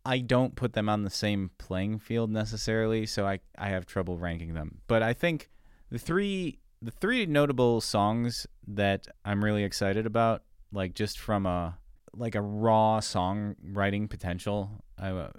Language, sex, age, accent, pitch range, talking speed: English, male, 30-49, American, 90-120 Hz, 165 wpm